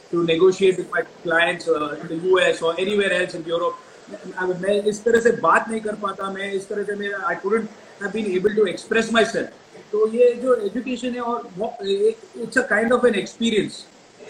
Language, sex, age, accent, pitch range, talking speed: Hindi, male, 40-59, native, 180-225 Hz, 195 wpm